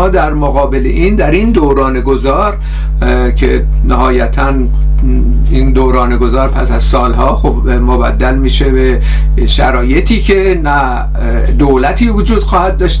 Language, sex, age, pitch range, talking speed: Persian, male, 50-69, 130-185 Hz, 125 wpm